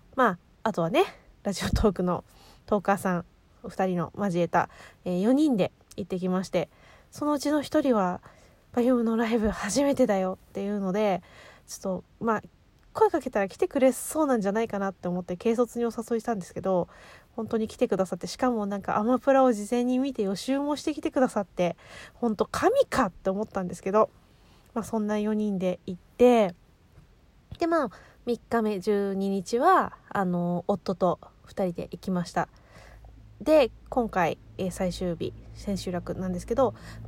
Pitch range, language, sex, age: 185-255 Hz, Japanese, female, 20-39